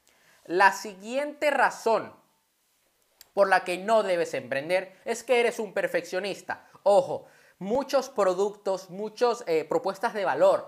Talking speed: 125 wpm